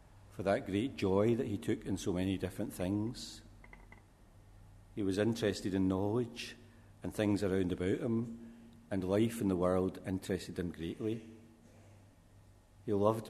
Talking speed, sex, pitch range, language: 140 wpm, male, 95-105 Hz, English